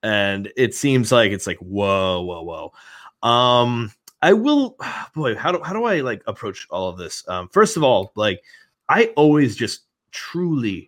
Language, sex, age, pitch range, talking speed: English, male, 30-49, 95-120 Hz, 175 wpm